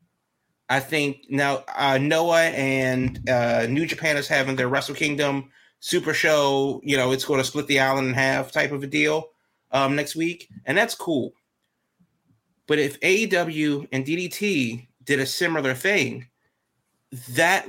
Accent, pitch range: American, 130-155 Hz